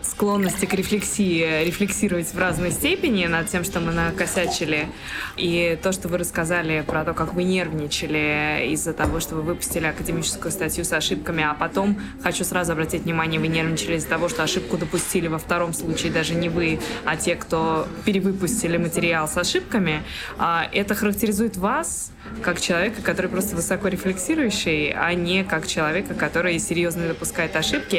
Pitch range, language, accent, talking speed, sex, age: 160-190 Hz, Russian, native, 155 wpm, female, 20-39